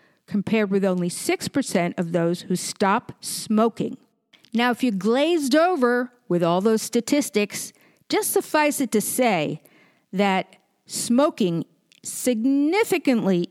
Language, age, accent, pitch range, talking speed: English, 50-69, American, 195-285 Hz, 115 wpm